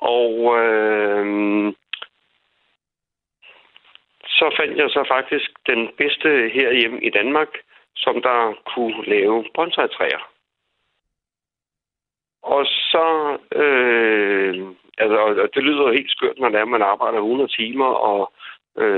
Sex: male